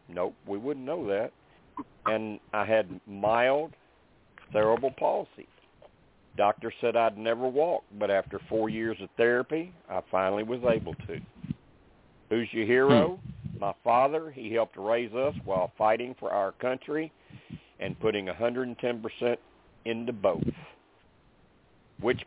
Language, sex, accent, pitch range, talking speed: English, male, American, 105-130 Hz, 125 wpm